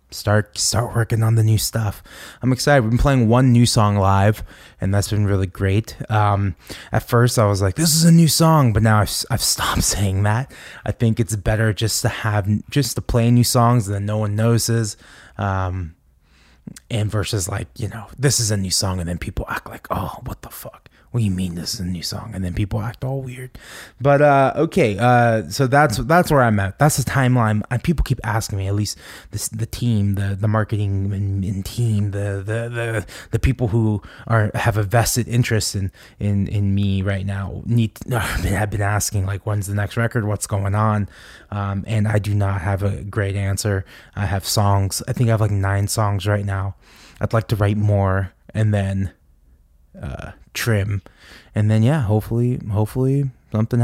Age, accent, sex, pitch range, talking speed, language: 20-39, American, male, 100-120 Hz, 205 wpm, English